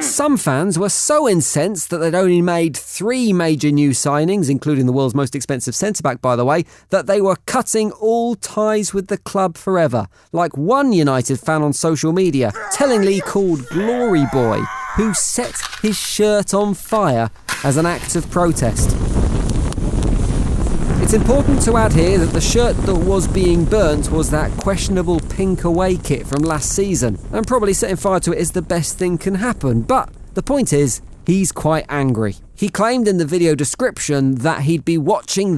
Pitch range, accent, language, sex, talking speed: 140-195 Hz, British, English, male, 175 wpm